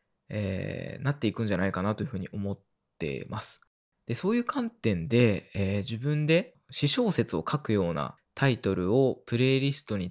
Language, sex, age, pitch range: Japanese, male, 20-39, 105-150 Hz